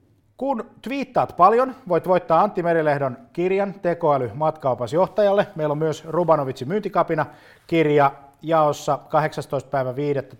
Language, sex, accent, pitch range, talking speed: Finnish, male, native, 130-170 Hz, 100 wpm